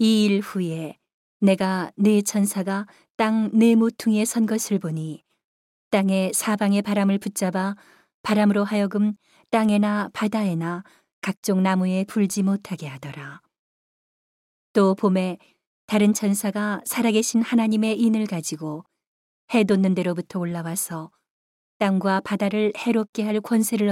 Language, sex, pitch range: Korean, female, 185-215 Hz